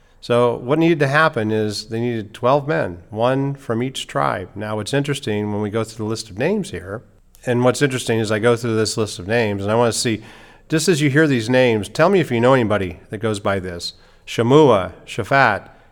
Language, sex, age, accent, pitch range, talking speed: English, male, 40-59, American, 105-135 Hz, 225 wpm